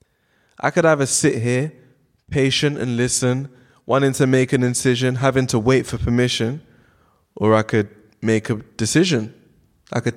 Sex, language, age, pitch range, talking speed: male, English, 20-39, 110-135 Hz, 155 wpm